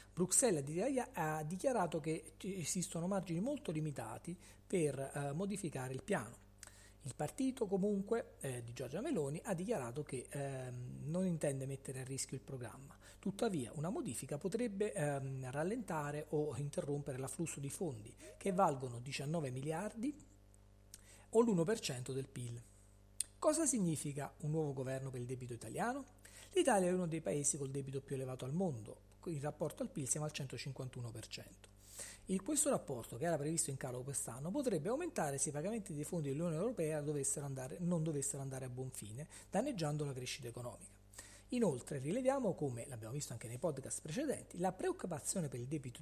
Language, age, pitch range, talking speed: Italian, 40-59, 130-180 Hz, 160 wpm